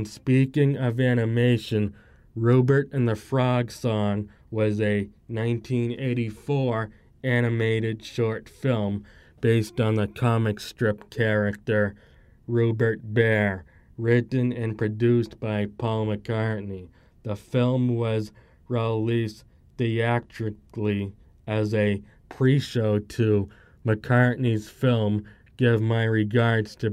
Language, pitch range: English, 110-125 Hz